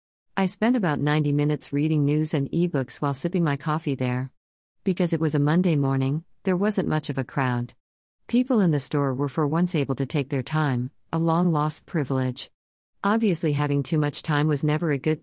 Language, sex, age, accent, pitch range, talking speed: English, female, 50-69, American, 130-165 Hz, 195 wpm